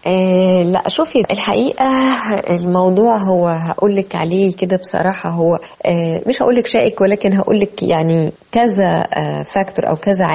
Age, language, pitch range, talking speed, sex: 20-39, Arabic, 165-205 Hz, 135 wpm, female